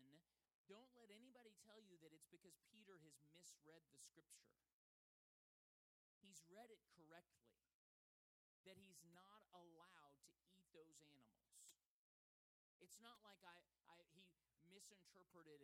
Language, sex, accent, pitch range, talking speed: English, male, American, 160-220 Hz, 125 wpm